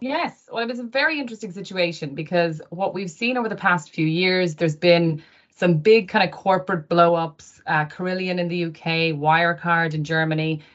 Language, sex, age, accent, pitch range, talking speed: English, female, 30-49, Irish, 160-185 Hz, 185 wpm